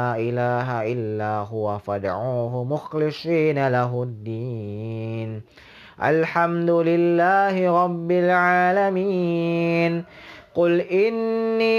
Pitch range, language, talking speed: 125-170 Hz, English, 50 wpm